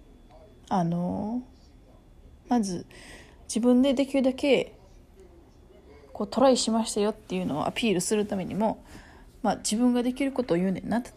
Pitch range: 185-230 Hz